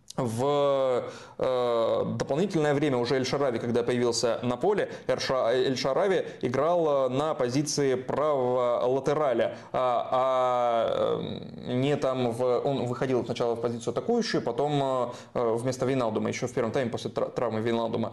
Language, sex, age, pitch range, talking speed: Russian, male, 20-39, 120-145 Hz, 130 wpm